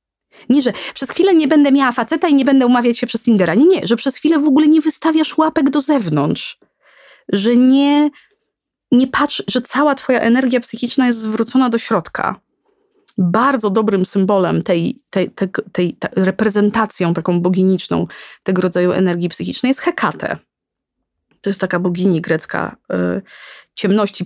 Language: Polish